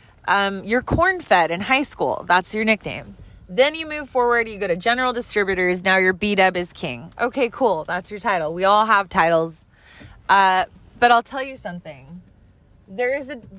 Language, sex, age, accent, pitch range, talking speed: English, female, 20-39, American, 165-235 Hz, 190 wpm